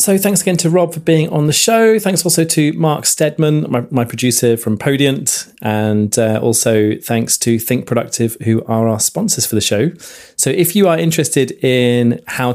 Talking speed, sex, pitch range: 195 wpm, male, 105-150 Hz